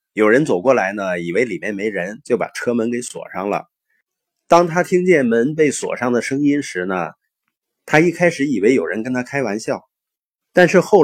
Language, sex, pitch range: Chinese, male, 125-170 Hz